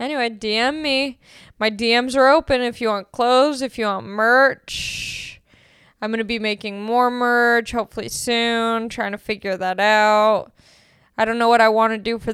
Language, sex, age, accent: English, female, 10-29, American